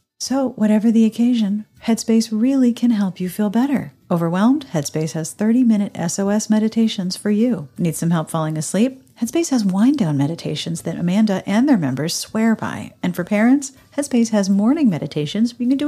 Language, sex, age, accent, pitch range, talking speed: English, female, 40-59, American, 165-235 Hz, 170 wpm